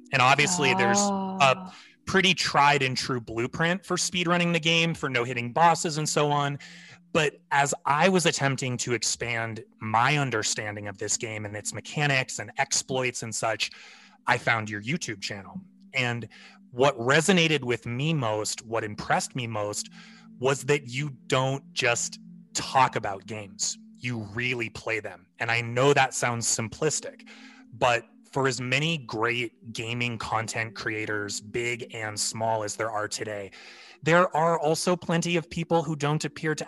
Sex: male